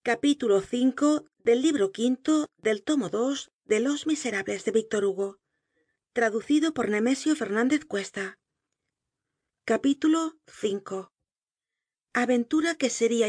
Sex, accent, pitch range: female, Spanish, 205-275 Hz